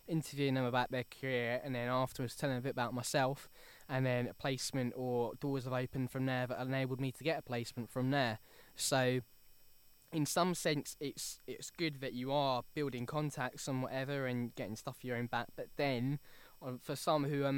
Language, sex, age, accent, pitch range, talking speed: English, male, 10-29, British, 125-150 Hz, 200 wpm